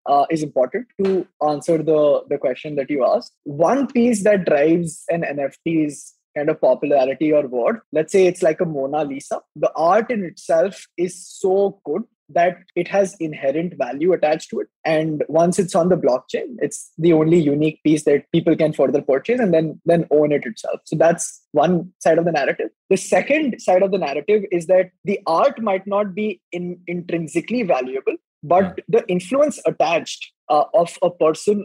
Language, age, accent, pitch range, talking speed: English, 20-39, Indian, 155-200 Hz, 185 wpm